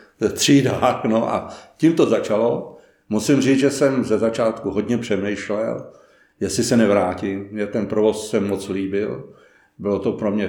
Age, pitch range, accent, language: 60-79, 105-125 Hz, native, Czech